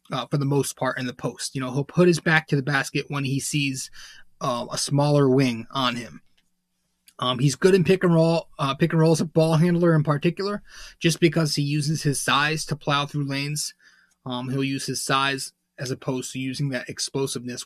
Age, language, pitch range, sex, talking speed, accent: 20-39, English, 140-180 Hz, male, 220 wpm, American